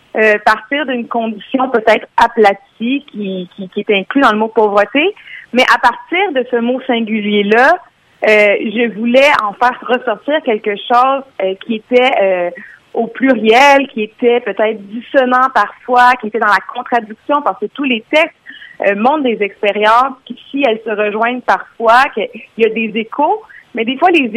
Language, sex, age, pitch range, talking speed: French, female, 40-59, 210-265 Hz, 175 wpm